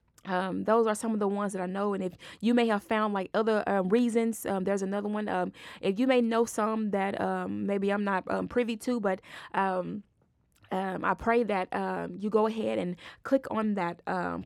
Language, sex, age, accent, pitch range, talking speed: English, female, 20-39, American, 185-230 Hz, 220 wpm